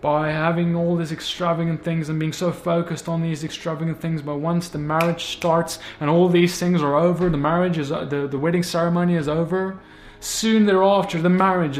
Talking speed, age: 195 wpm, 20-39